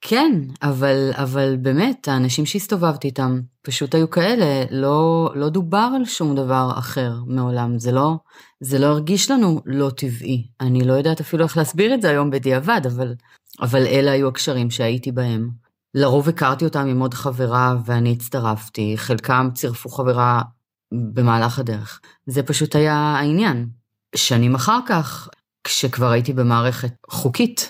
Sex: female